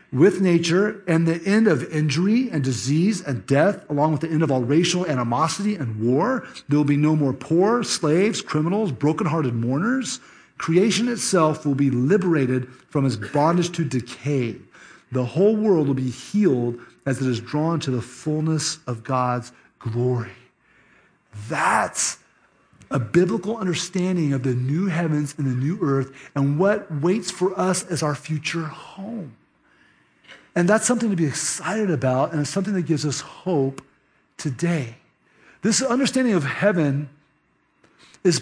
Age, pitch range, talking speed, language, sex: 40-59, 140-195 Hz, 155 wpm, English, male